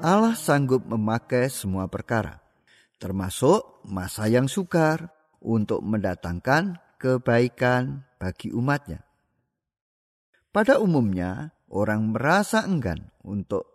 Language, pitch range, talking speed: Indonesian, 110-175 Hz, 85 wpm